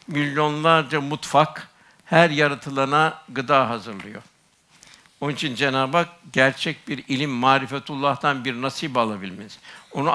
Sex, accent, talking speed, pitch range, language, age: male, native, 105 wpm, 140-165 Hz, Turkish, 60-79